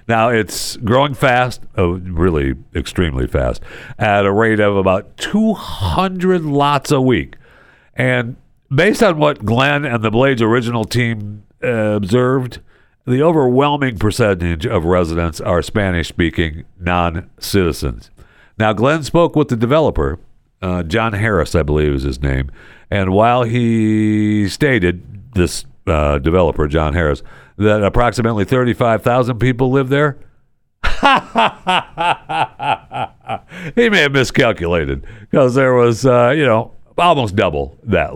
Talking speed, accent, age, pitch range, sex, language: 125 wpm, American, 60-79, 95-140 Hz, male, English